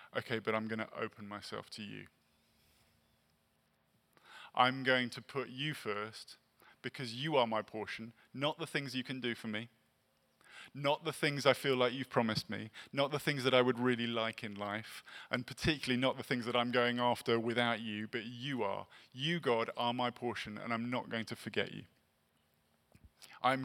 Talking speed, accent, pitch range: 190 wpm, British, 110-130 Hz